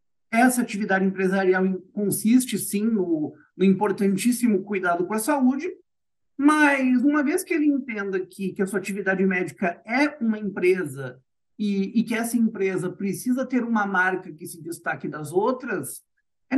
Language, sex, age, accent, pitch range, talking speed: Portuguese, male, 50-69, Brazilian, 190-245 Hz, 150 wpm